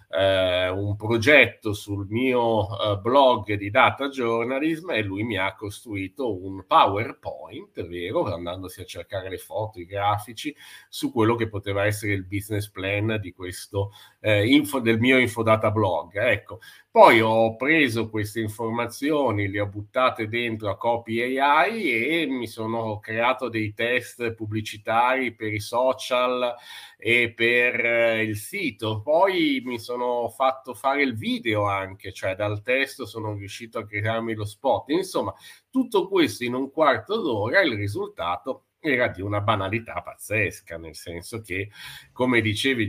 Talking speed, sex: 145 wpm, male